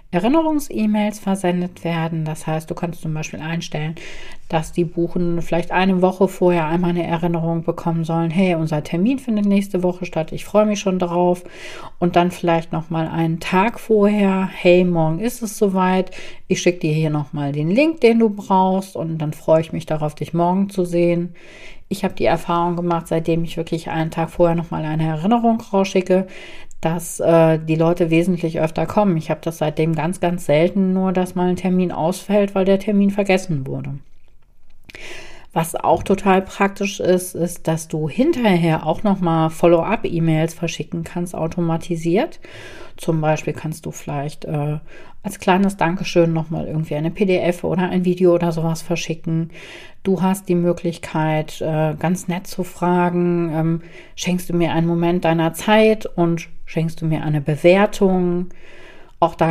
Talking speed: 165 wpm